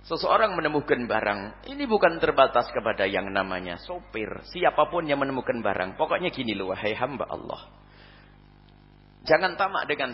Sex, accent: male, Indonesian